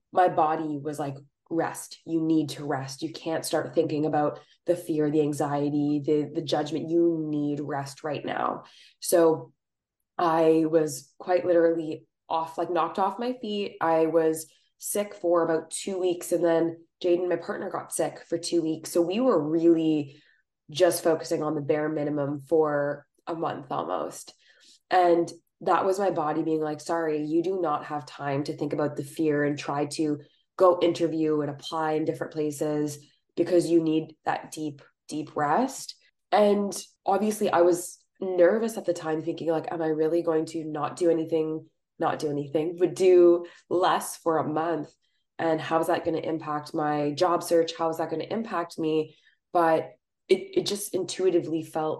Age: 20-39